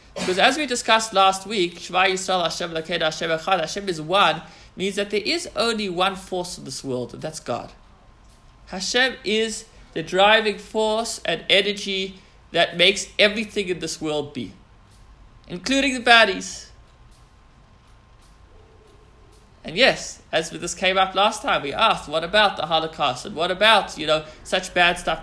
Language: English